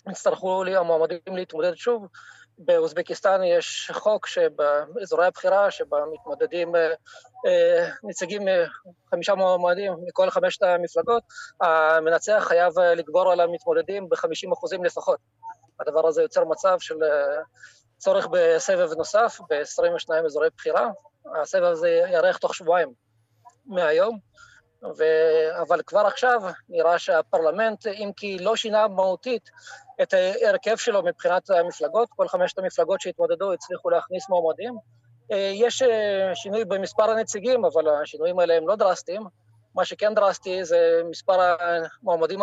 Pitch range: 170-255 Hz